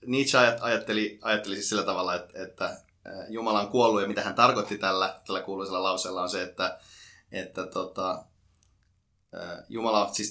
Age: 30-49